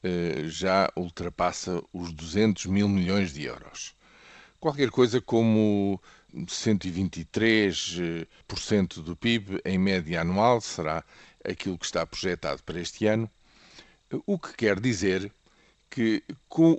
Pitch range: 90-130 Hz